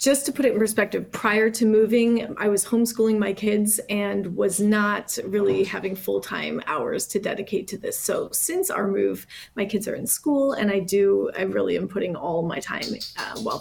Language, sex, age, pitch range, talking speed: English, female, 30-49, 210-245 Hz, 205 wpm